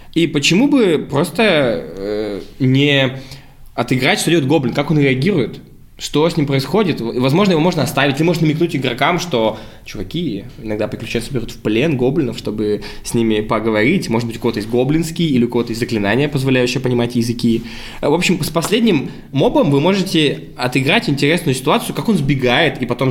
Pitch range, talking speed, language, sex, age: 120-155 Hz, 170 wpm, Russian, male, 20-39